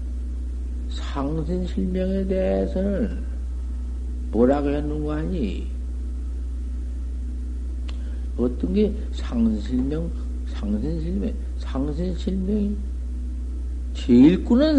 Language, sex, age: Korean, male, 60-79